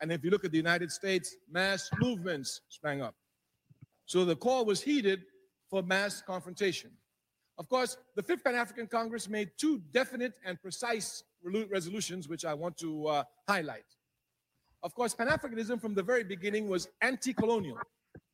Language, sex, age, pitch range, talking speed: English, male, 50-69, 160-215 Hz, 155 wpm